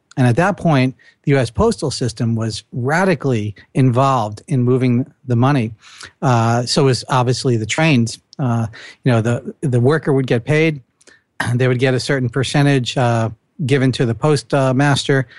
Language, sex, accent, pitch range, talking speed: English, male, American, 120-140 Hz, 160 wpm